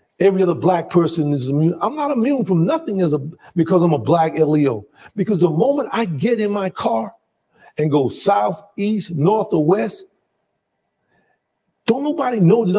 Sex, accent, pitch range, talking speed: male, American, 170-225 Hz, 175 wpm